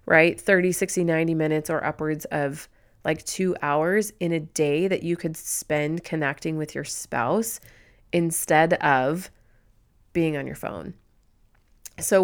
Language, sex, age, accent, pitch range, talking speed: English, female, 30-49, American, 150-180 Hz, 140 wpm